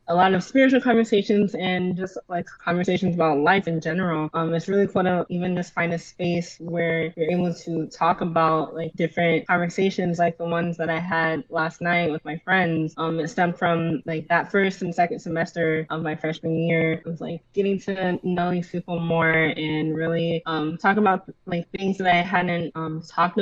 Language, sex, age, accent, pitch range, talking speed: English, female, 20-39, American, 165-185 Hz, 200 wpm